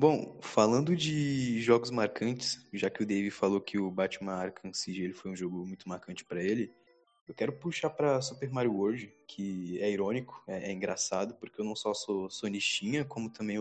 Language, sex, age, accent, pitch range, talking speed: Portuguese, male, 20-39, Brazilian, 100-135 Hz, 195 wpm